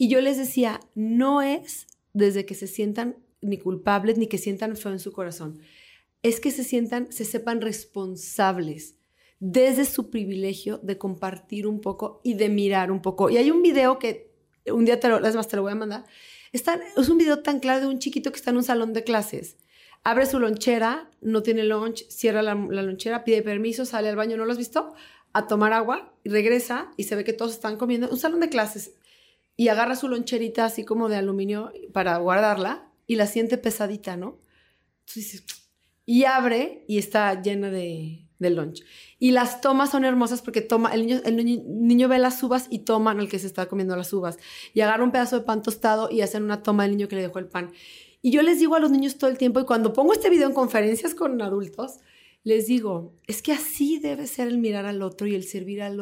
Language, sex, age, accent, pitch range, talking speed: Spanish, female, 30-49, Mexican, 205-255 Hz, 220 wpm